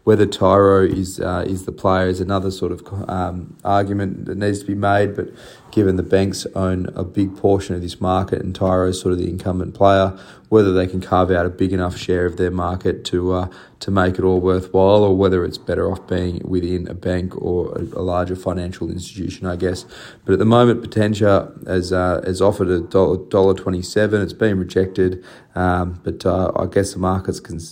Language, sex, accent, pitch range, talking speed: English, male, Australian, 90-100 Hz, 200 wpm